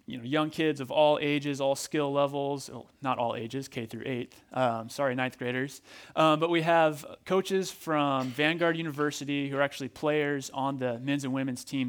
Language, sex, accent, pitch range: English, male, American, 130-160 Hz